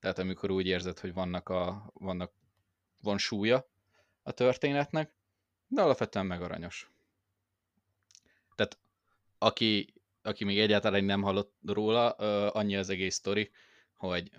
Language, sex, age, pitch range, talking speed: Hungarian, male, 20-39, 95-105 Hz, 120 wpm